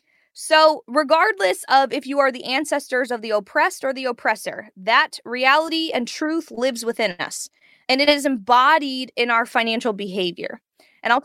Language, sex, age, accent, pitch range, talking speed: English, female, 20-39, American, 225-280 Hz, 165 wpm